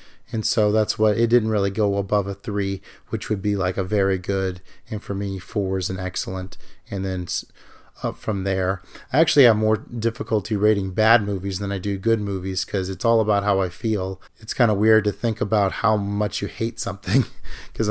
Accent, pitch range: American, 100-120 Hz